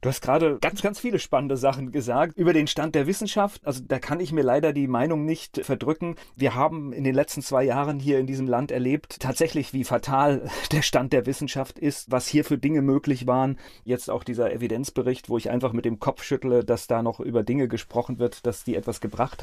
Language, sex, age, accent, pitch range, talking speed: German, male, 30-49, German, 125-150 Hz, 220 wpm